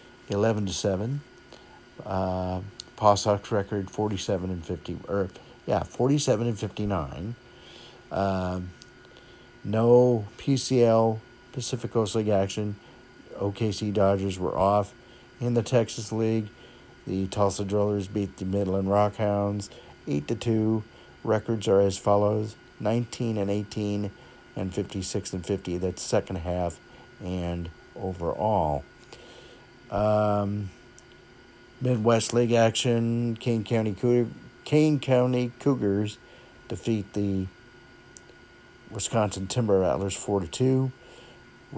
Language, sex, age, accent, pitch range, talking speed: English, male, 50-69, American, 100-120 Hz, 105 wpm